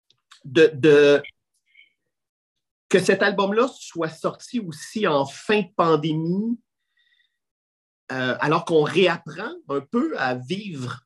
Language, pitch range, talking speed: French, 135-190 Hz, 110 wpm